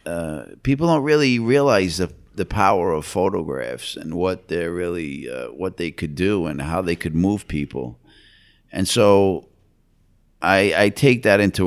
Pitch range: 80-100 Hz